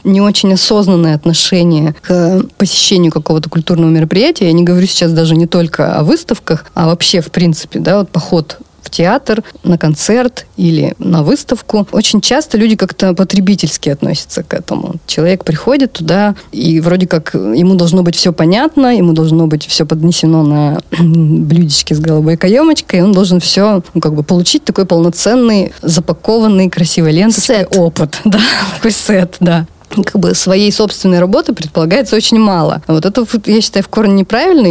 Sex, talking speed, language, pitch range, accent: female, 155 wpm, Russian, 160-200 Hz, native